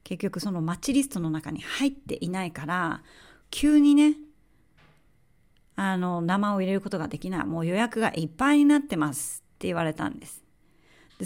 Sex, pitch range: female, 170-225 Hz